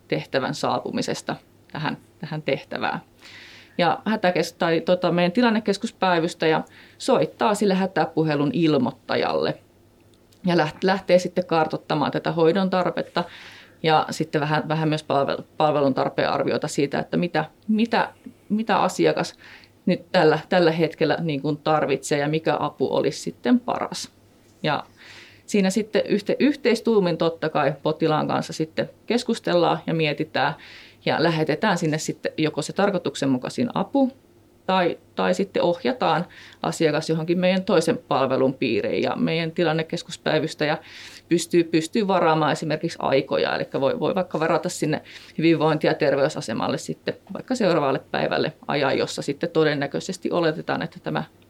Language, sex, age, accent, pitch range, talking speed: Finnish, female, 30-49, native, 155-185 Hz, 125 wpm